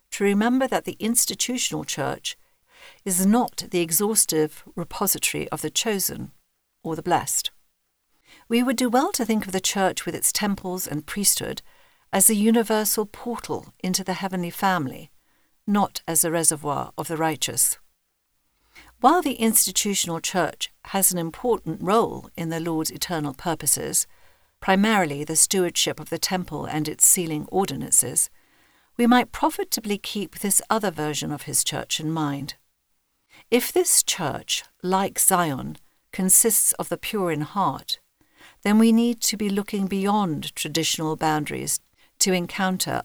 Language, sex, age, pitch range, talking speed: English, female, 50-69, 155-215 Hz, 145 wpm